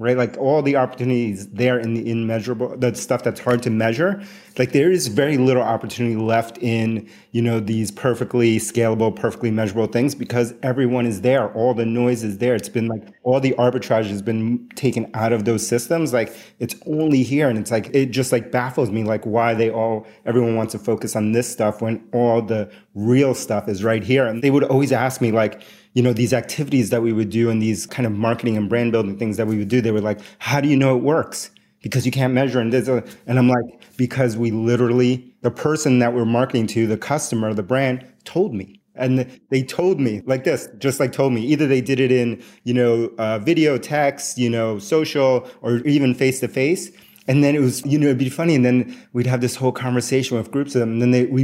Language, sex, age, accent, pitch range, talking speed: English, male, 30-49, American, 115-130 Hz, 225 wpm